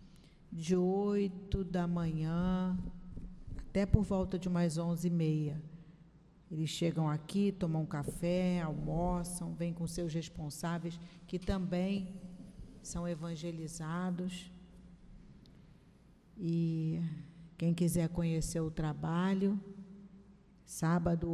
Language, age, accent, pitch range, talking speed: Portuguese, 50-69, Brazilian, 165-185 Hz, 95 wpm